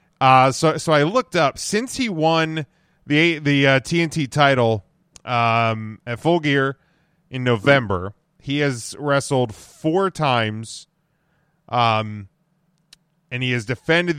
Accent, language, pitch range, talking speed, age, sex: American, English, 110-160 Hz, 125 wpm, 30-49, male